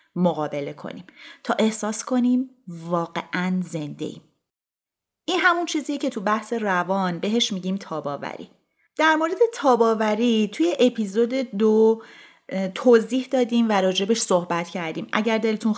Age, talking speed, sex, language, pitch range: 30-49, 120 wpm, female, Persian, 185-255 Hz